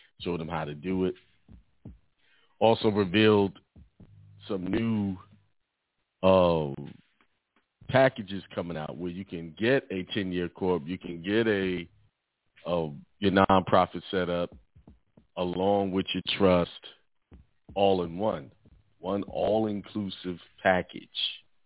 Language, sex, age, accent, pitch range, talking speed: English, male, 40-59, American, 85-105 Hz, 110 wpm